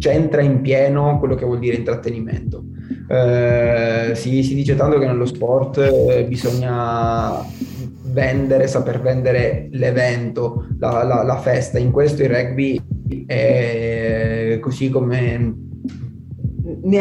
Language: Italian